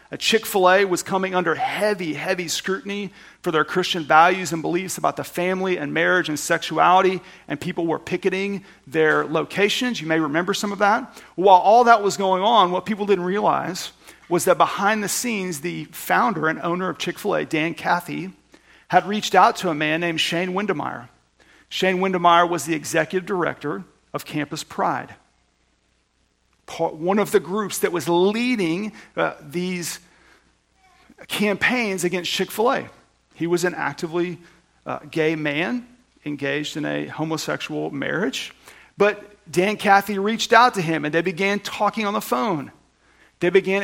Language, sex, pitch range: English, male, 165-200 Hz